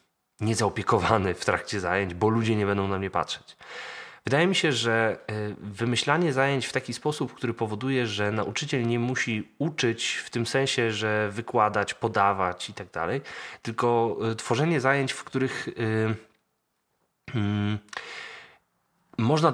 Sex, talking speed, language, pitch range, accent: male, 130 wpm, Polish, 105-140 Hz, native